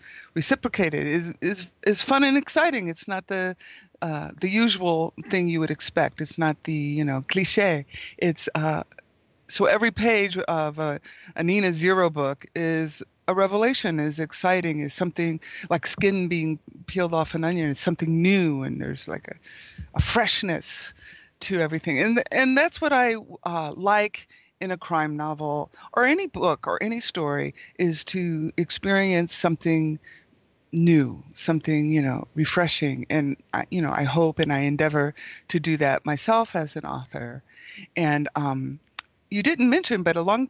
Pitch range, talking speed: 155-190 Hz, 160 wpm